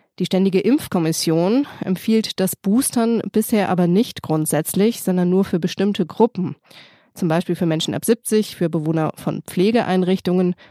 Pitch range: 165-200 Hz